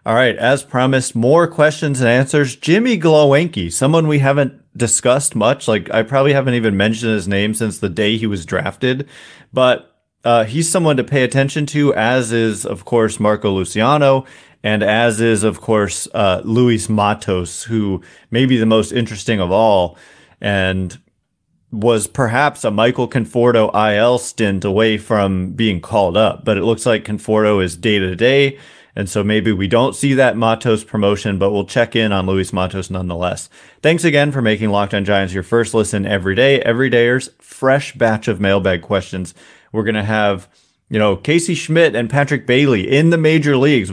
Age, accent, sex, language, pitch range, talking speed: 30-49, American, male, English, 105-130 Hz, 175 wpm